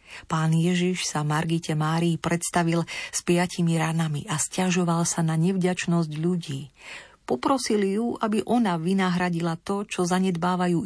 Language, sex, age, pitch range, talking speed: Slovak, female, 40-59, 160-195 Hz, 125 wpm